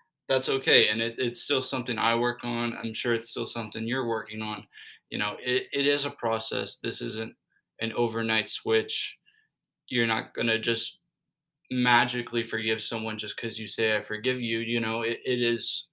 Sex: male